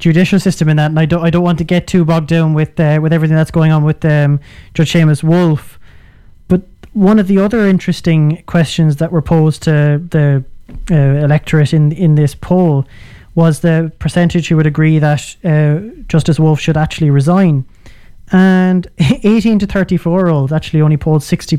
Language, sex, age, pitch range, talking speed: English, male, 20-39, 150-170 Hz, 190 wpm